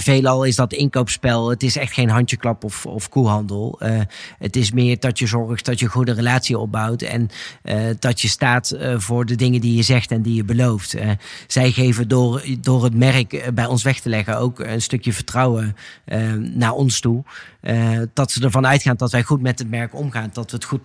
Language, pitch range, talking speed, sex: Dutch, 115-130 Hz, 220 wpm, male